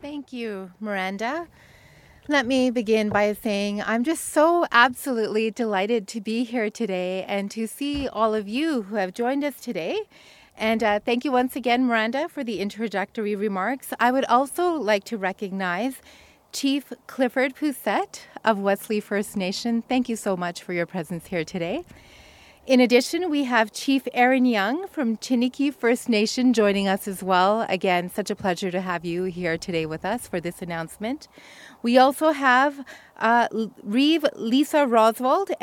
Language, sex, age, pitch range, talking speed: English, female, 30-49, 200-255 Hz, 165 wpm